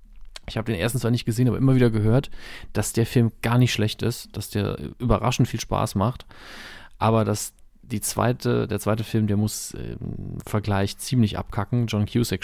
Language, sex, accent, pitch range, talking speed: German, male, German, 105-125 Hz, 190 wpm